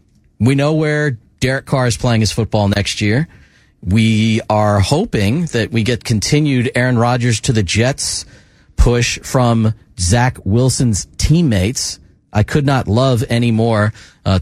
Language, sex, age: English, male, 40-59